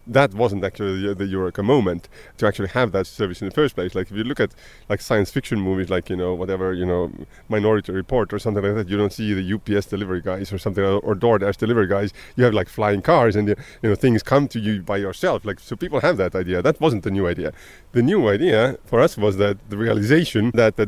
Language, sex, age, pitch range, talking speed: English, male, 30-49, 95-115 Hz, 245 wpm